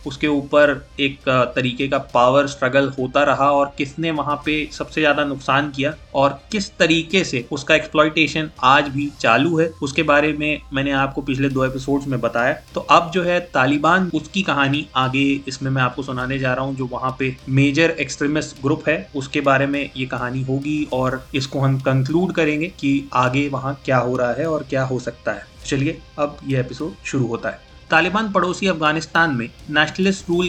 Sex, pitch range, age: male, 135-165 Hz, 30-49